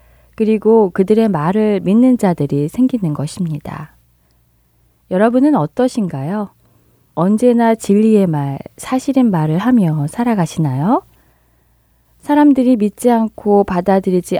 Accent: native